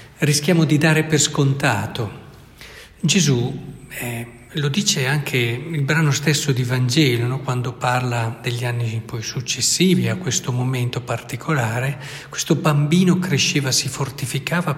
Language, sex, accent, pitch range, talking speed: Italian, male, native, 125-155 Hz, 125 wpm